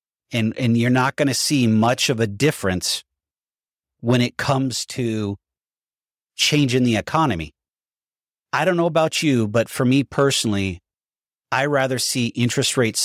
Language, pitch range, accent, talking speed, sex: English, 100-130 Hz, American, 145 wpm, male